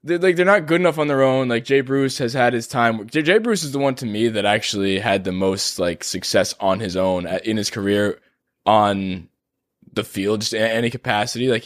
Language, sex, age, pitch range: English, male, 20-39, 110-140 Hz